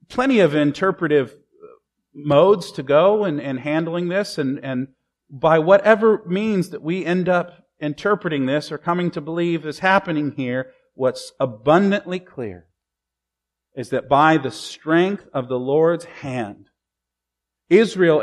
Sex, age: male, 40-59